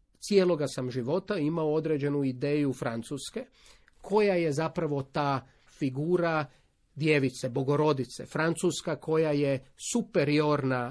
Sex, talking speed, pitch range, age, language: male, 100 wpm, 140-185 Hz, 40-59, Croatian